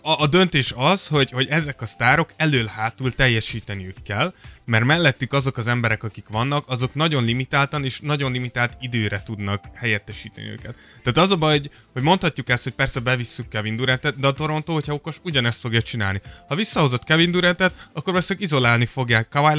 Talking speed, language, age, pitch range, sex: 175 wpm, Hungarian, 20-39, 115-155 Hz, male